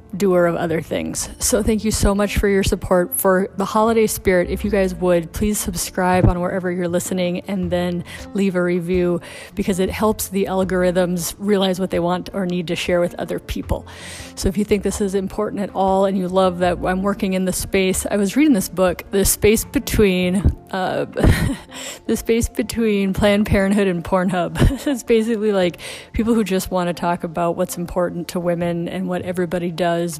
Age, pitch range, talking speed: 30-49, 180-200 Hz, 195 wpm